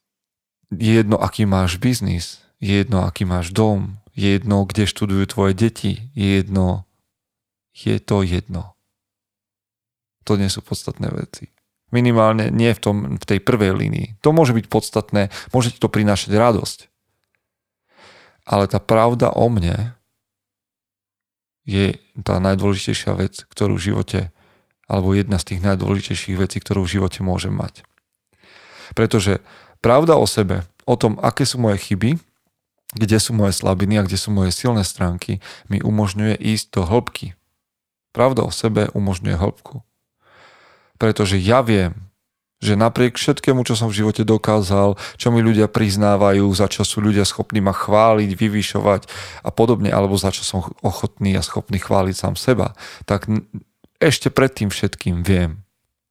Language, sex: Slovak, male